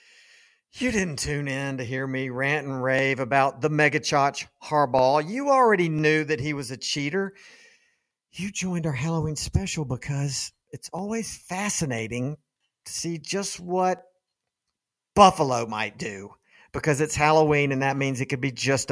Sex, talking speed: male, 155 wpm